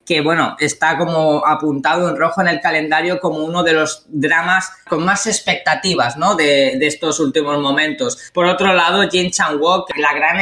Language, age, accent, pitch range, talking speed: Spanish, 20-39, Spanish, 155-185 Hz, 180 wpm